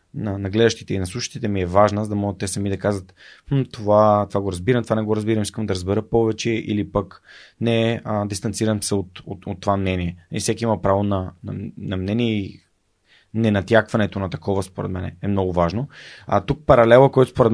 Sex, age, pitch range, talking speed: male, 20-39, 100-115 Hz, 215 wpm